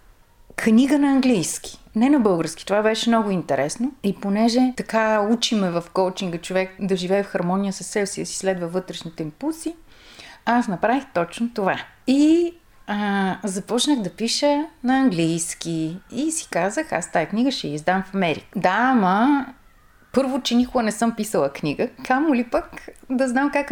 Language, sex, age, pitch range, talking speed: Bulgarian, female, 30-49, 180-255 Hz, 165 wpm